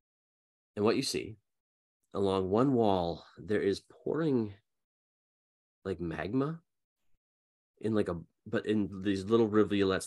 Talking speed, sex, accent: 120 wpm, male, American